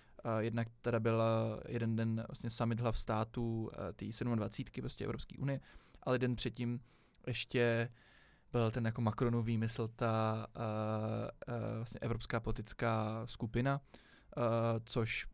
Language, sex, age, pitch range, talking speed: Czech, male, 20-39, 115-125 Hz, 120 wpm